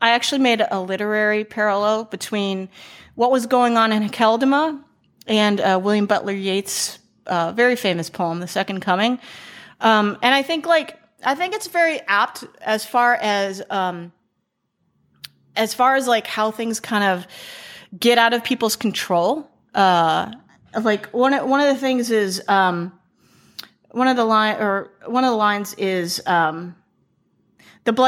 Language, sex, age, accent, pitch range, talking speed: English, female, 30-49, American, 195-240 Hz, 155 wpm